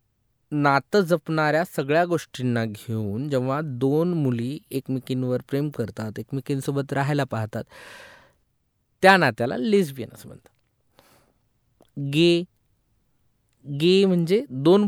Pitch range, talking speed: 135-165 Hz, 75 wpm